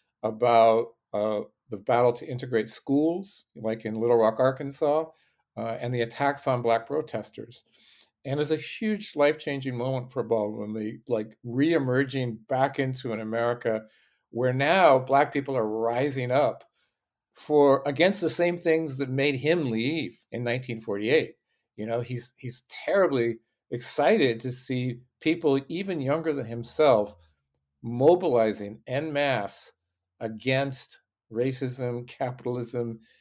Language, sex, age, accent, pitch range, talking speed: English, male, 50-69, American, 115-140 Hz, 125 wpm